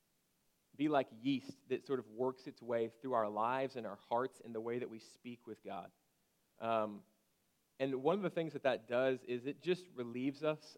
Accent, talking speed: American, 205 wpm